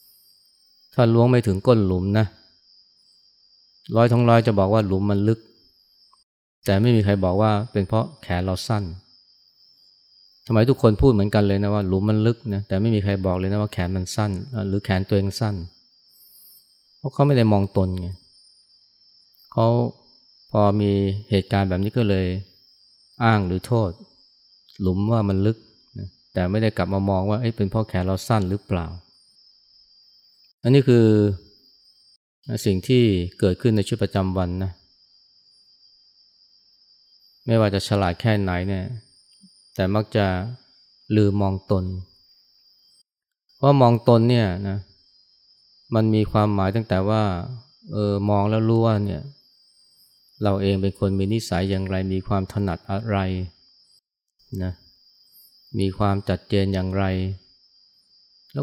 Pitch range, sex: 95-110 Hz, male